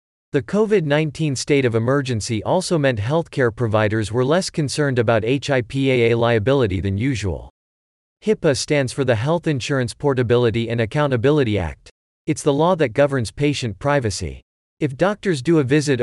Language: English